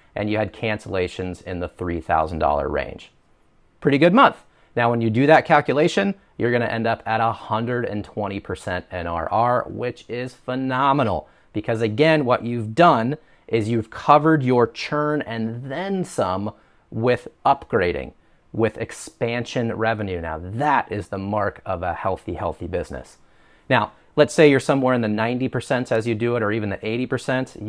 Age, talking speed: 30-49, 155 wpm